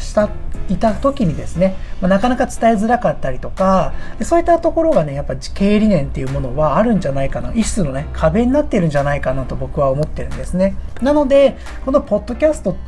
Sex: male